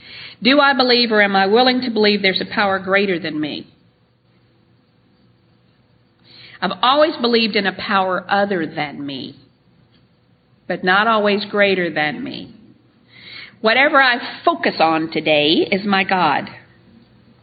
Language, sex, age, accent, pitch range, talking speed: English, female, 50-69, American, 190-250 Hz, 130 wpm